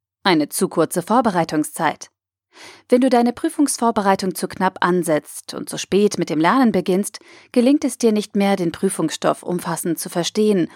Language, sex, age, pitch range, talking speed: German, female, 30-49, 165-225 Hz, 155 wpm